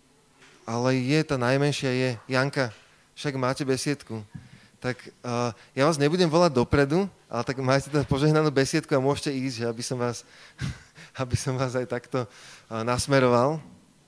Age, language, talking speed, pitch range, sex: 20-39, Slovak, 155 wpm, 125-145 Hz, male